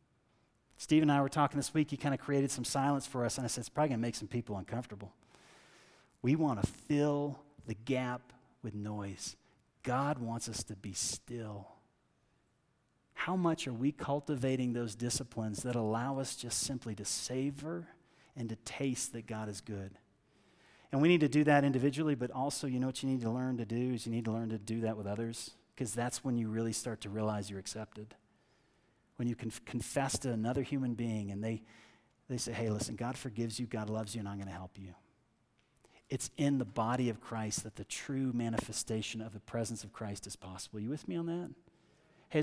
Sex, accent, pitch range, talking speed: male, American, 110-145 Hz, 210 wpm